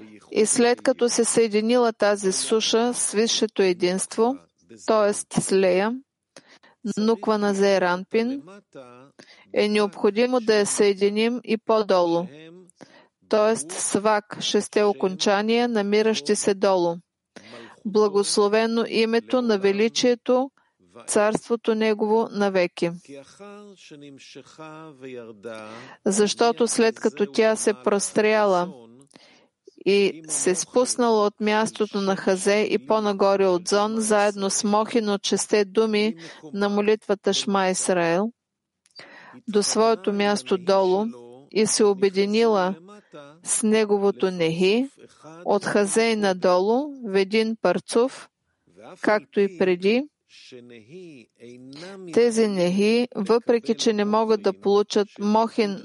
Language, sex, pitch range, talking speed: English, female, 190-225 Hz, 100 wpm